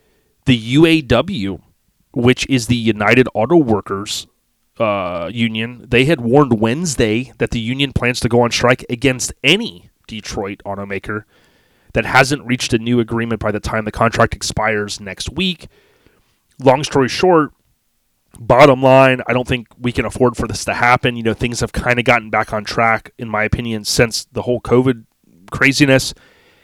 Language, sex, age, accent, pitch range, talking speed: English, male, 30-49, American, 110-130 Hz, 165 wpm